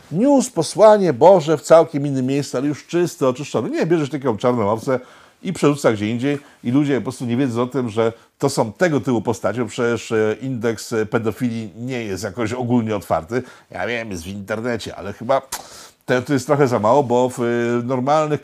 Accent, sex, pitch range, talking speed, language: native, male, 110-140 Hz, 190 wpm, Polish